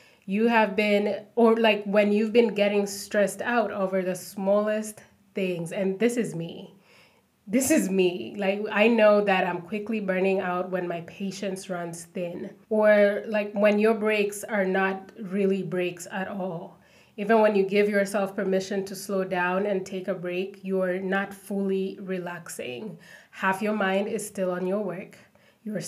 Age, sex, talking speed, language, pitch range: 20-39, female, 165 wpm, English, 190-215 Hz